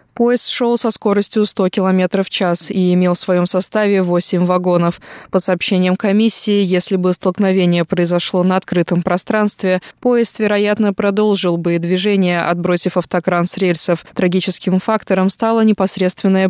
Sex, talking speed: female, 140 wpm